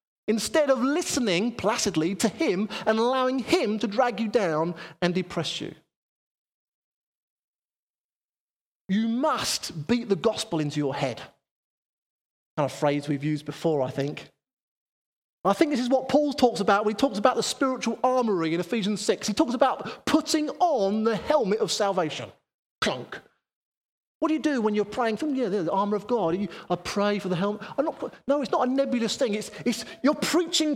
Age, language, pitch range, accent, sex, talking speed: 30-49, English, 195-295 Hz, British, male, 170 wpm